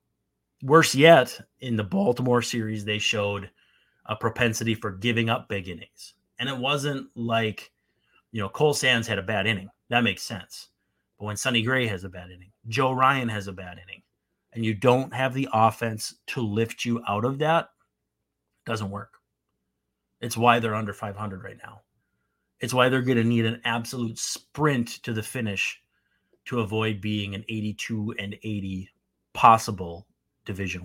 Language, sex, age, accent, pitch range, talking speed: English, male, 30-49, American, 100-120 Hz, 165 wpm